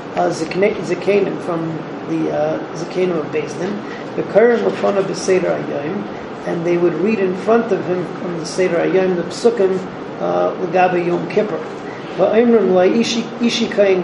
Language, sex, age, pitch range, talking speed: English, male, 40-59, 175-205 Hz, 165 wpm